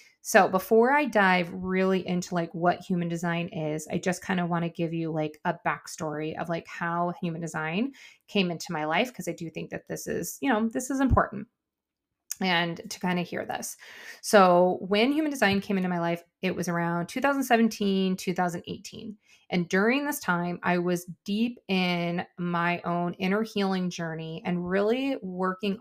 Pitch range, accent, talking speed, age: 175-210 Hz, American, 180 wpm, 30-49